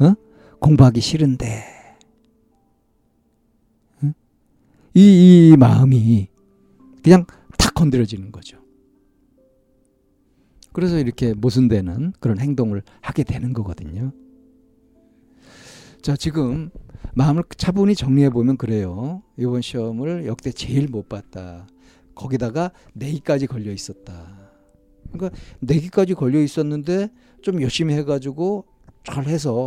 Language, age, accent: Korean, 50-69, native